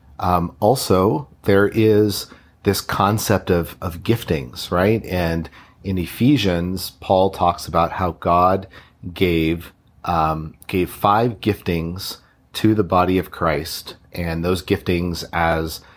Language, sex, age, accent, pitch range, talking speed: English, male, 40-59, American, 90-110 Hz, 120 wpm